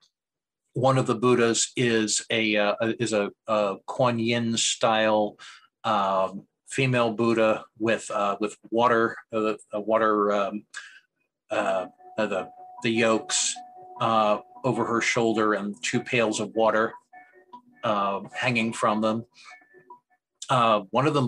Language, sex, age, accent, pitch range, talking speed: English, male, 50-69, American, 110-140 Hz, 125 wpm